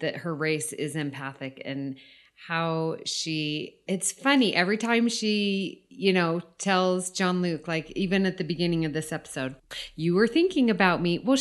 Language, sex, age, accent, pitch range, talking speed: English, female, 30-49, American, 155-200 Hz, 170 wpm